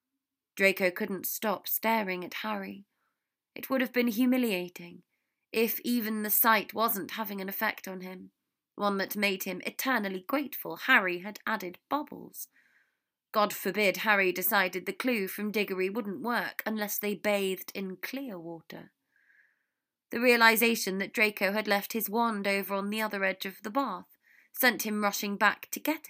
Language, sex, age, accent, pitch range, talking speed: English, female, 20-39, British, 195-235 Hz, 160 wpm